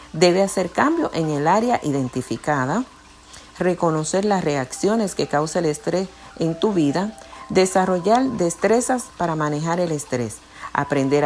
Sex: female